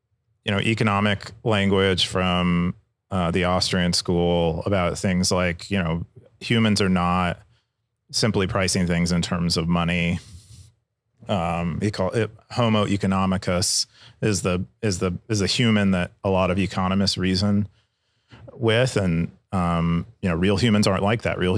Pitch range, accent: 90-115 Hz, American